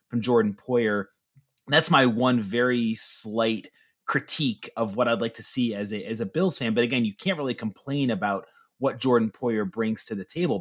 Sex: male